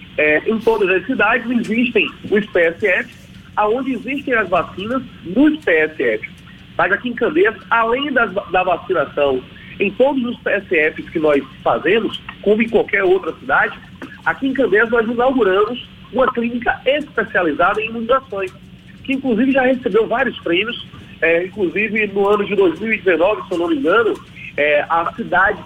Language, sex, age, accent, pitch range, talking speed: Portuguese, male, 40-59, Brazilian, 175-245 Hz, 140 wpm